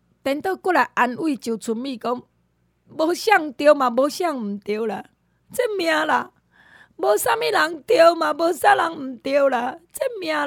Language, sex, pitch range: Chinese, female, 205-290 Hz